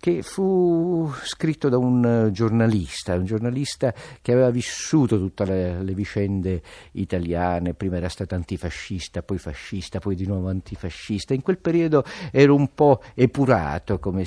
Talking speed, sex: 145 wpm, male